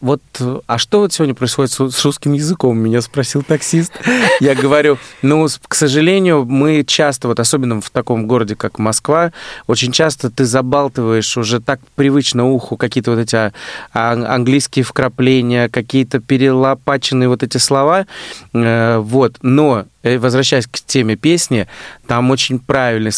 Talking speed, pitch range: 130 wpm, 105-135 Hz